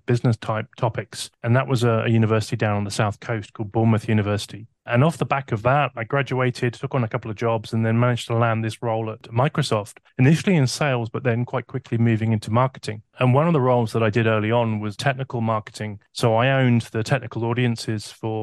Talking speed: 230 wpm